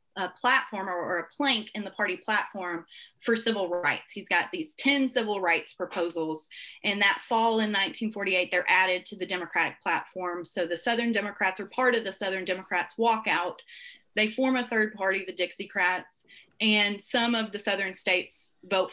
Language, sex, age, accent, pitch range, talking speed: English, female, 30-49, American, 180-230 Hz, 175 wpm